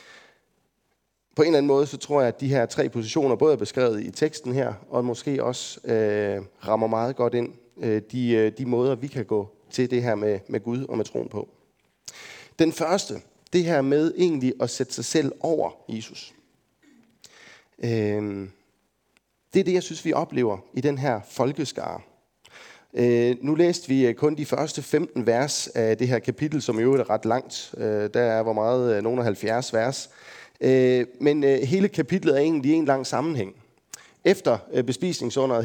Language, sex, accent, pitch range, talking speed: Danish, male, native, 115-145 Hz, 180 wpm